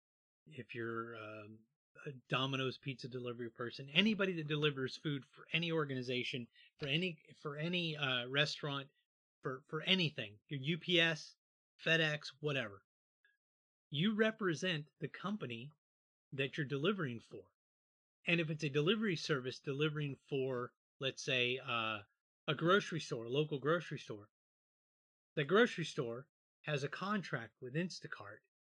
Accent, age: American, 30-49